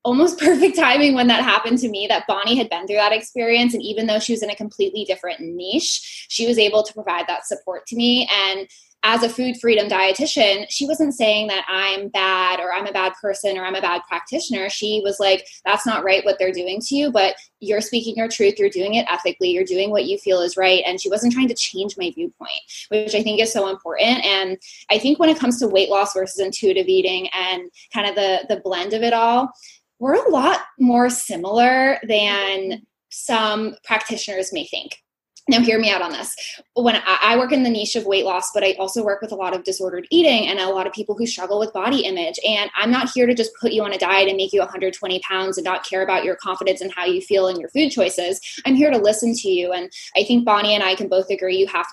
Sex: female